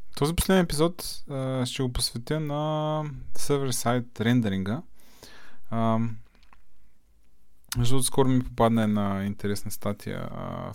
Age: 20-39